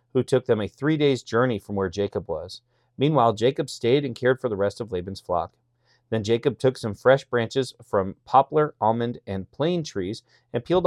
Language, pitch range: English, 100-130 Hz